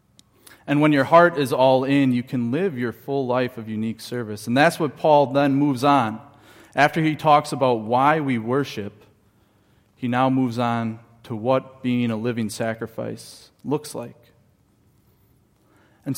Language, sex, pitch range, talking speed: English, male, 115-140 Hz, 160 wpm